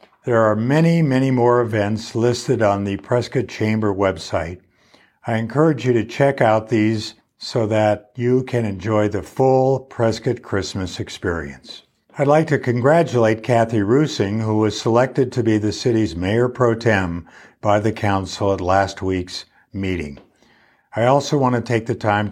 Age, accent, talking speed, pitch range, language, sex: 60-79, American, 160 wpm, 100-125 Hz, English, male